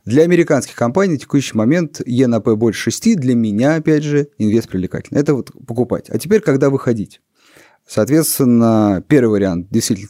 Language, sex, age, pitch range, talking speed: Russian, male, 30-49, 105-135 Hz, 165 wpm